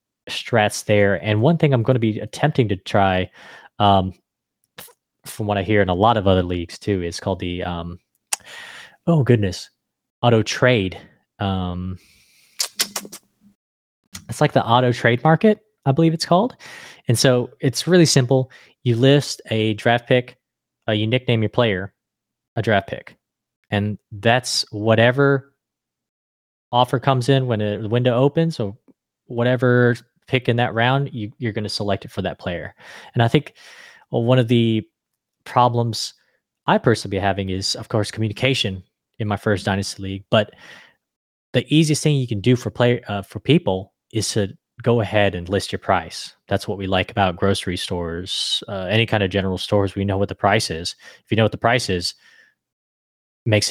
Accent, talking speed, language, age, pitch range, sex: American, 170 wpm, English, 20-39, 95-125 Hz, male